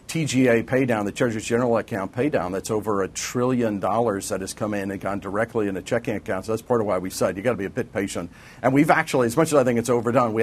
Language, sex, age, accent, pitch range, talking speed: English, male, 50-69, American, 105-125 Hz, 290 wpm